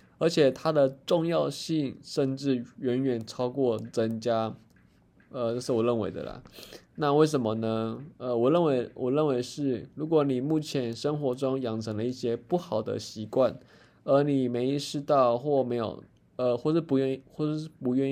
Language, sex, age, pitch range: Chinese, male, 20-39, 120-145 Hz